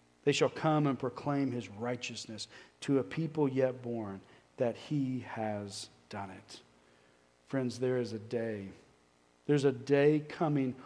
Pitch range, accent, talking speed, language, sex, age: 115-155 Hz, American, 145 wpm, English, male, 40-59